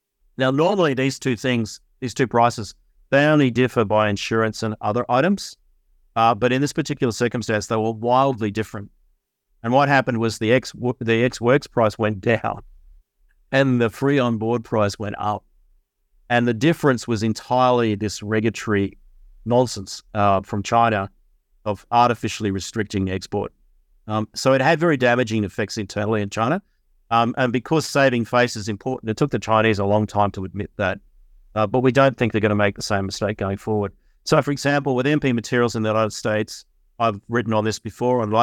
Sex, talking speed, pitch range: male, 180 wpm, 105-125 Hz